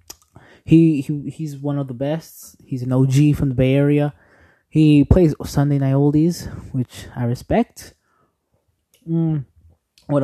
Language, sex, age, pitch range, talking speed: English, male, 20-39, 120-150 Hz, 140 wpm